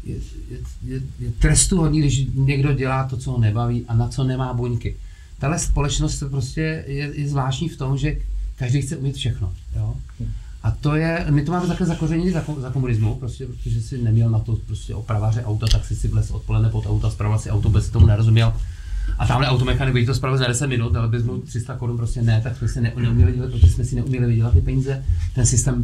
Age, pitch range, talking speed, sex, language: 30-49, 110-140 Hz, 215 wpm, male, Czech